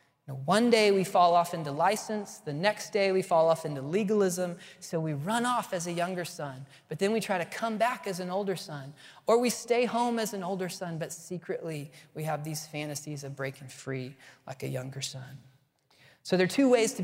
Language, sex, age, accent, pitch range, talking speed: English, male, 30-49, American, 140-180 Hz, 215 wpm